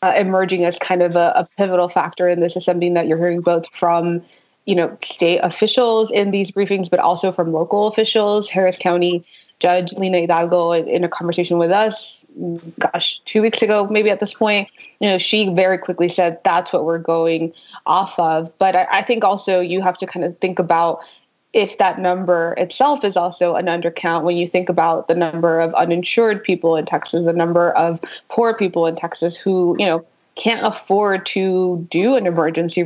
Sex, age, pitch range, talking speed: female, 20-39, 170-200 Hz, 195 wpm